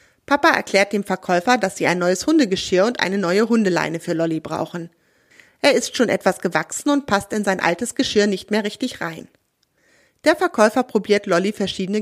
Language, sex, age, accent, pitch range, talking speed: German, female, 30-49, German, 180-245 Hz, 180 wpm